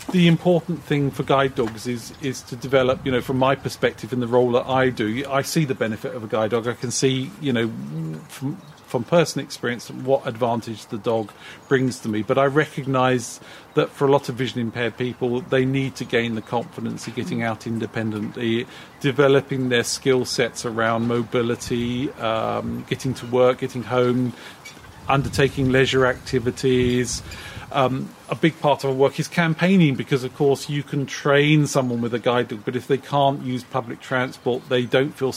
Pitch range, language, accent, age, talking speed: 120-135 Hz, English, British, 40-59, 190 wpm